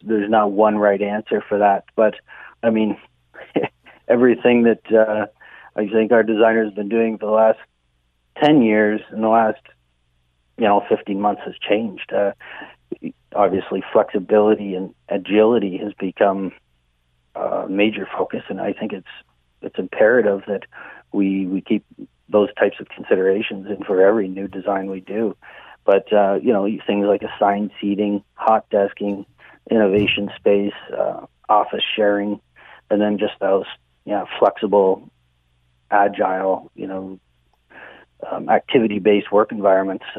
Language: English